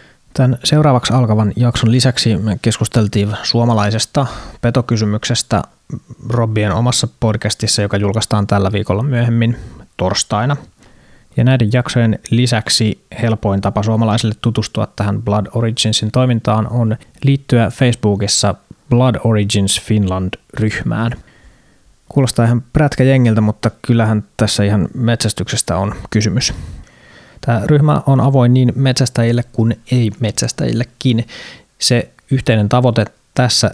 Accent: native